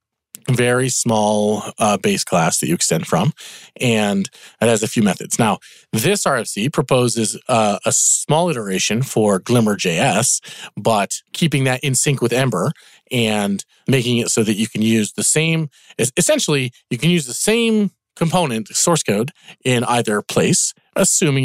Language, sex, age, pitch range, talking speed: English, male, 40-59, 110-160 Hz, 155 wpm